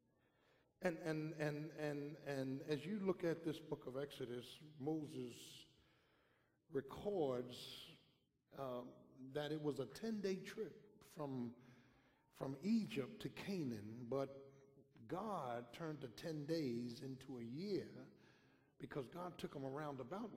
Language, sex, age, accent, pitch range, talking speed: English, male, 60-79, American, 130-160 Hz, 125 wpm